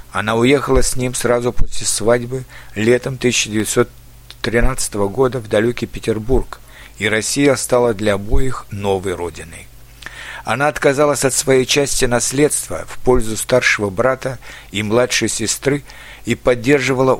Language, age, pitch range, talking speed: Russian, 50-69, 110-130 Hz, 120 wpm